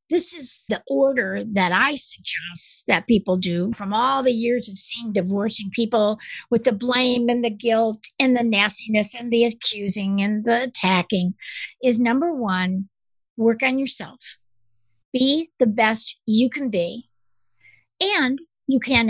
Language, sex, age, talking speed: English, female, 50-69, 150 wpm